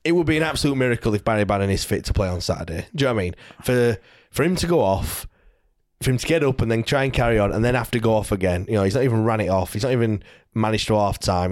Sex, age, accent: male, 20-39, British